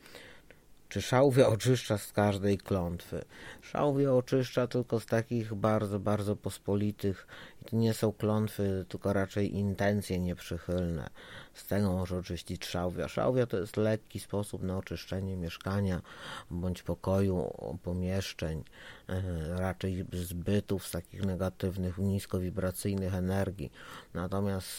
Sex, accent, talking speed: male, native, 115 wpm